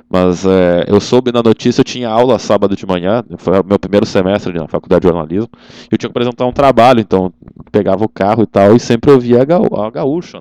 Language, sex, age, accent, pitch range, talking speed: Portuguese, male, 20-39, Brazilian, 100-145 Hz, 235 wpm